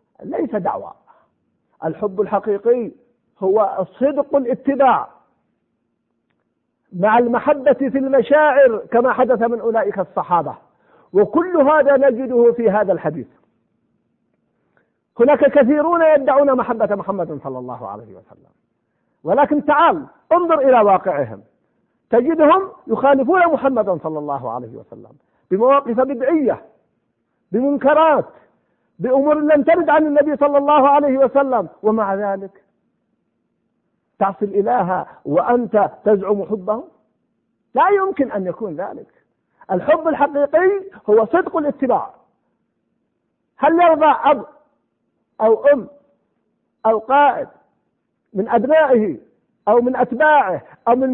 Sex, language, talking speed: male, Arabic, 100 wpm